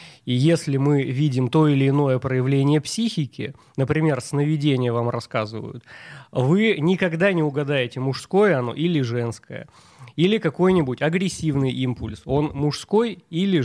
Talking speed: 125 wpm